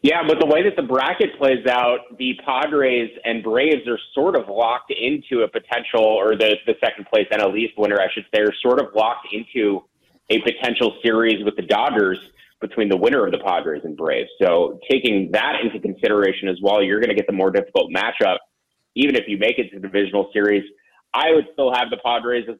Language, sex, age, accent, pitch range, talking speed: English, male, 30-49, American, 105-125 Hz, 215 wpm